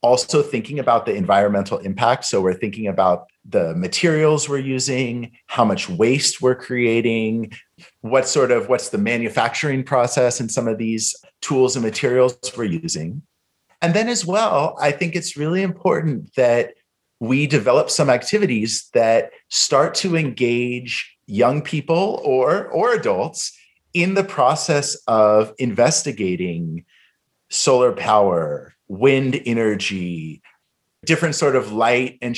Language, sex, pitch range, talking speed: English, male, 105-155 Hz, 135 wpm